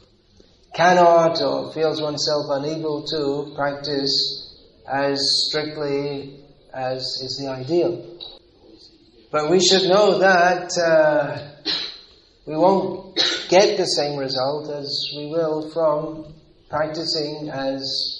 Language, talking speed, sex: English, 100 wpm, male